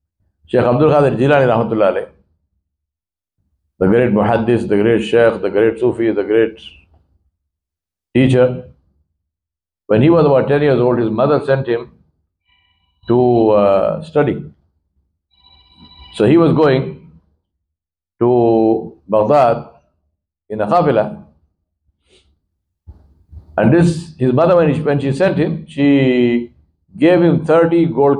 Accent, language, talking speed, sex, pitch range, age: Indian, English, 110 wpm, male, 85-135 Hz, 60-79